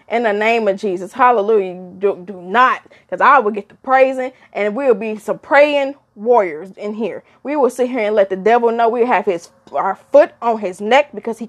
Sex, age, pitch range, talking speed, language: female, 10-29, 205-275 Hz, 220 wpm, English